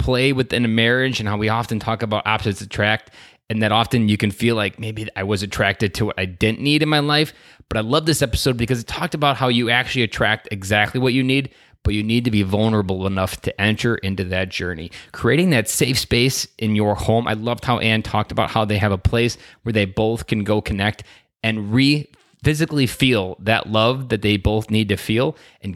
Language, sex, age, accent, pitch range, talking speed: English, male, 20-39, American, 105-125 Hz, 225 wpm